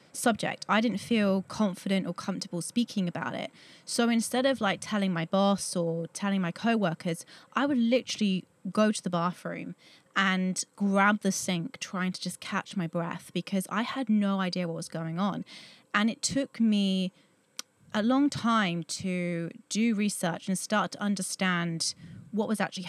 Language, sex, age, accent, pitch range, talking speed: English, female, 30-49, British, 180-215 Hz, 170 wpm